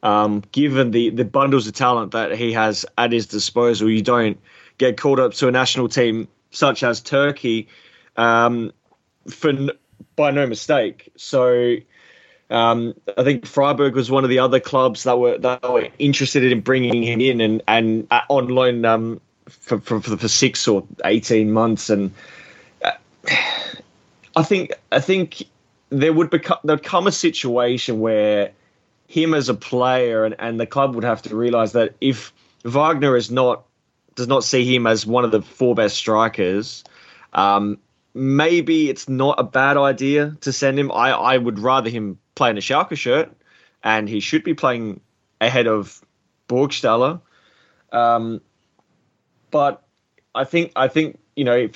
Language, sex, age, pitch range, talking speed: English, male, 20-39, 115-140 Hz, 160 wpm